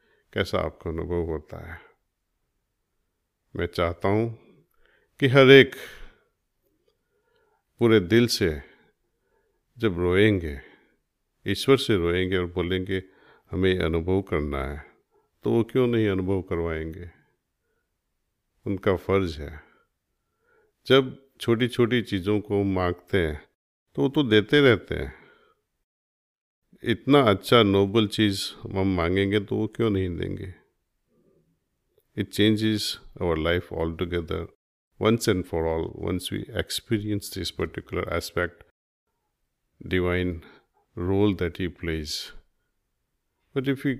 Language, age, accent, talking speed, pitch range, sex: Hindi, 50-69, native, 110 wpm, 85-120 Hz, male